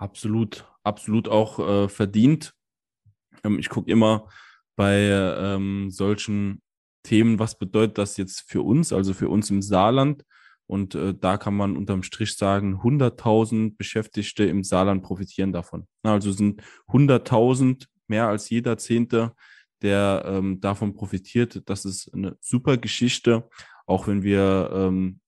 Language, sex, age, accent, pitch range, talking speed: German, male, 10-29, German, 95-110 Hz, 140 wpm